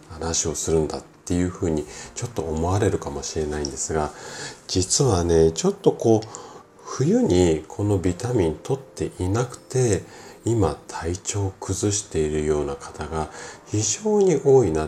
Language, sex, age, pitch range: Japanese, male, 40-59, 80-120 Hz